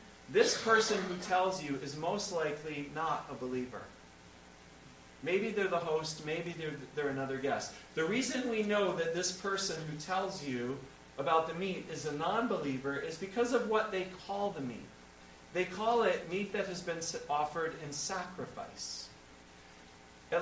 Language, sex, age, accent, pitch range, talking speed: English, male, 40-59, American, 145-200 Hz, 160 wpm